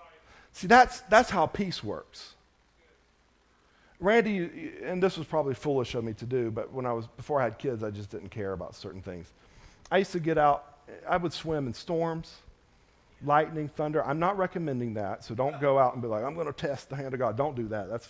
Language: English